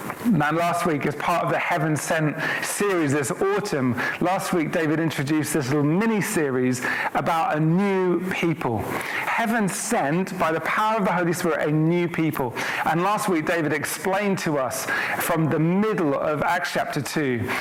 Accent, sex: British, male